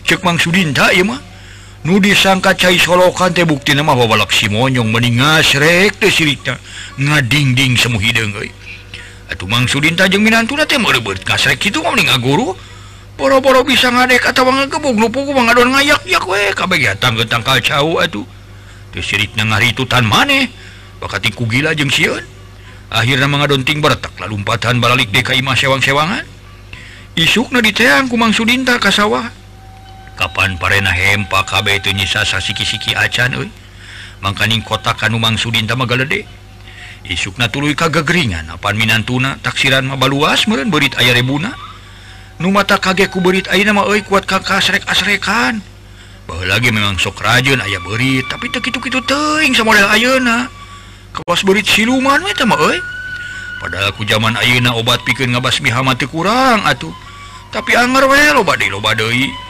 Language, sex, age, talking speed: Indonesian, male, 60-79, 155 wpm